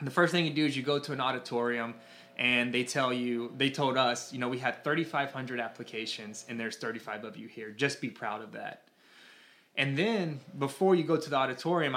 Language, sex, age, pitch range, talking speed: English, male, 20-39, 115-135 Hz, 215 wpm